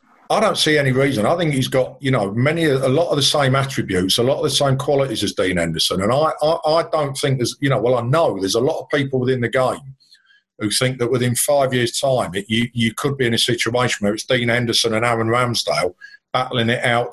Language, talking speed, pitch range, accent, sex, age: English, 250 wpm, 110-140 Hz, British, male, 50-69